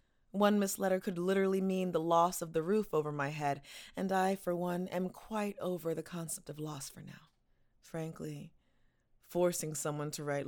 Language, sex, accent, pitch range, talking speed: English, female, American, 155-190 Hz, 180 wpm